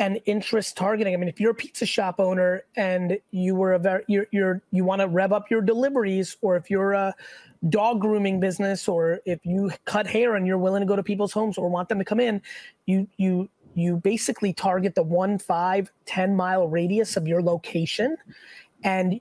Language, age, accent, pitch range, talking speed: English, 20-39, American, 185-230 Hz, 210 wpm